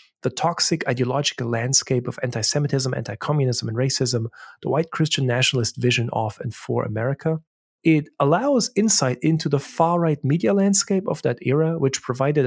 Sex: male